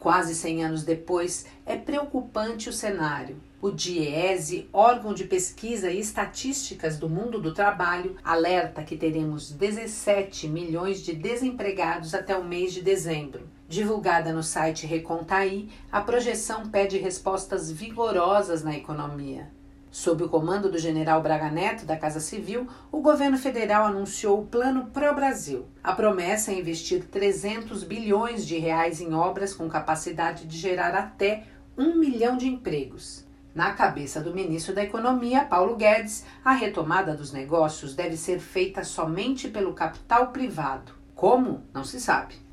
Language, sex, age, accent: Portuguese, female, 50-69, Brazilian